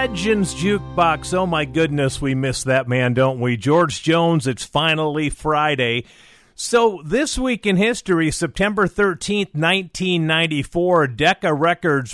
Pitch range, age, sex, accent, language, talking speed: 135-175 Hz, 40-59, male, American, English, 130 wpm